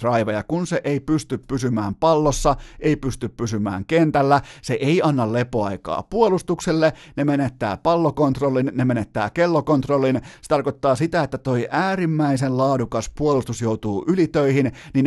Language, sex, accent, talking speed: Finnish, male, native, 135 wpm